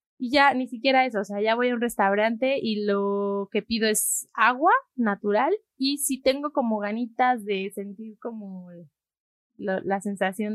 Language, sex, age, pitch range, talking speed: Spanish, female, 20-39, 185-230 Hz, 170 wpm